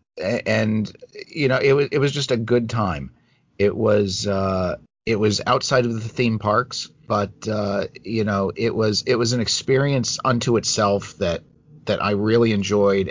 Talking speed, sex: 175 wpm, male